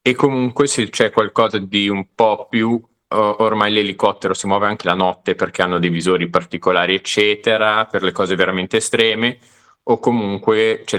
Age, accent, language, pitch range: 20-39, native, Italian, 90-110 Hz